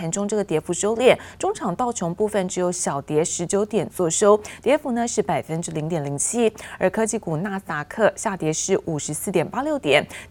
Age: 30-49